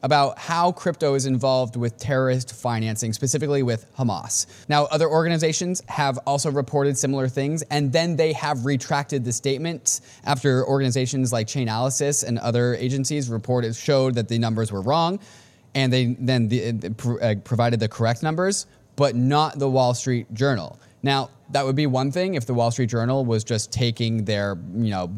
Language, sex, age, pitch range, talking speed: English, male, 20-39, 115-145 Hz, 165 wpm